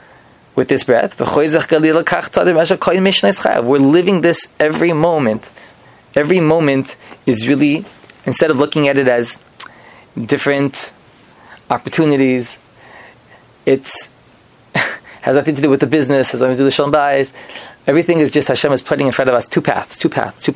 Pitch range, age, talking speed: 135-165 Hz, 20-39, 135 wpm